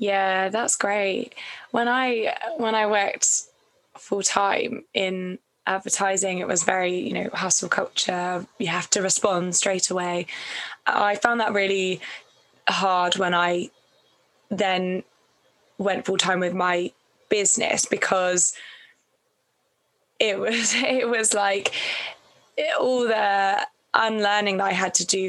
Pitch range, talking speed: 190-225 Hz, 130 wpm